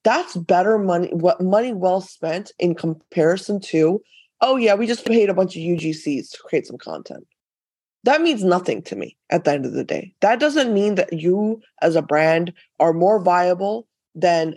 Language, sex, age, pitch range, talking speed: English, female, 20-39, 170-210 Hz, 190 wpm